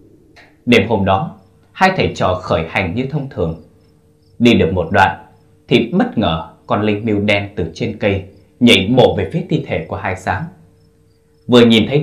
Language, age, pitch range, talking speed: Vietnamese, 20-39, 90-115 Hz, 185 wpm